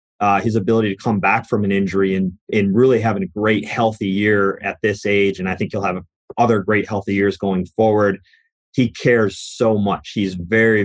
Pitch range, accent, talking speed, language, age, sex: 95-110 Hz, American, 205 wpm, English, 30-49, male